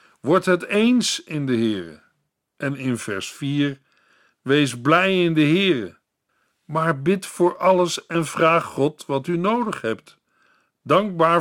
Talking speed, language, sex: 140 wpm, Dutch, male